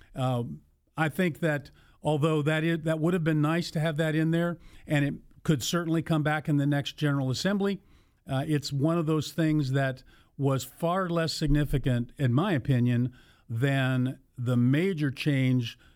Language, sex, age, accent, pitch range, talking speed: English, male, 50-69, American, 130-160 Hz, 175 wpm